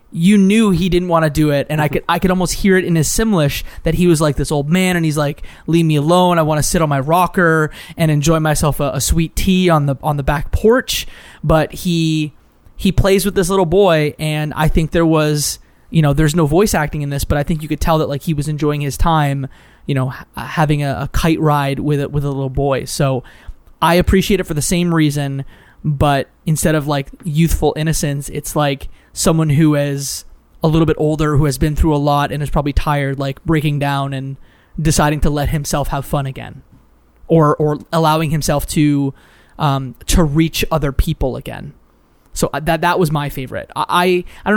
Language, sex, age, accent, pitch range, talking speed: English, male, 20-39, American, 145-175 Hz, 220 wpm